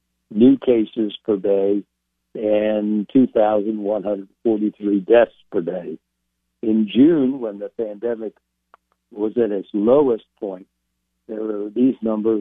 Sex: male